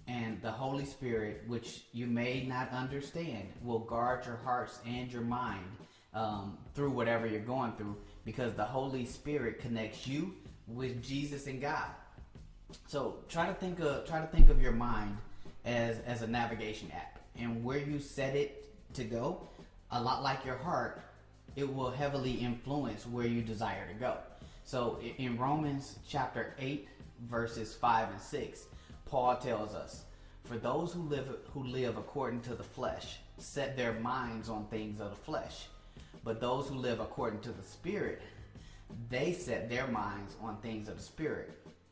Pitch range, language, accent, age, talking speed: 110-135 Hz, English, American, 30-49, 160 wpm